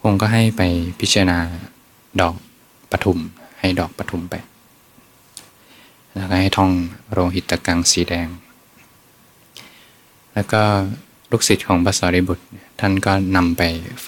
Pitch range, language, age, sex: 90-100 Hz, Thai, 20-39, male